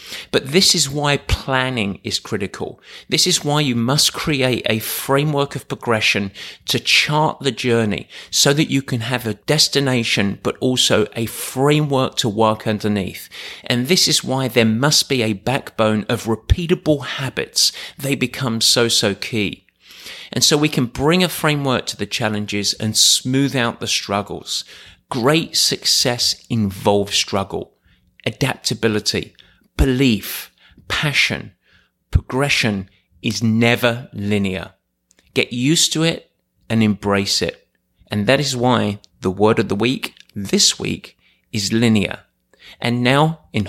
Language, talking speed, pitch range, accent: English, 140 wpm, 105-140 Hz, British